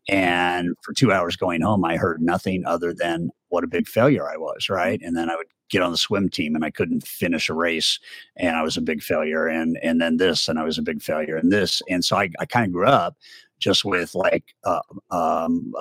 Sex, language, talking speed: male, English, 240 wpm